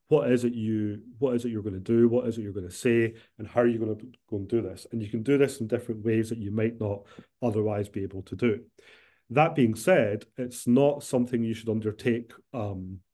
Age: 30-49